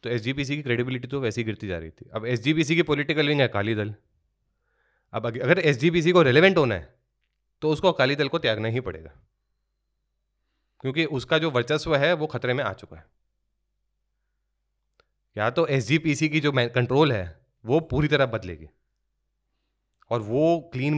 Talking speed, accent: 165 wpm, native